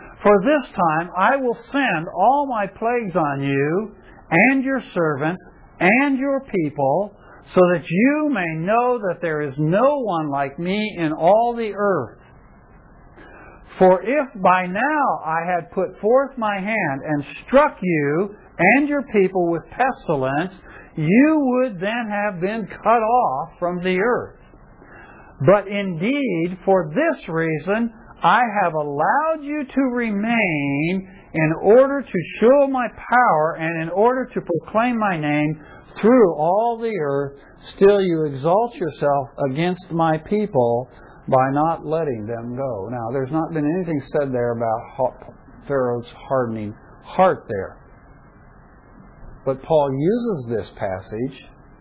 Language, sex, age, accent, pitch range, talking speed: English, male, 60-79, American, 140-225 Hz, 135 wpm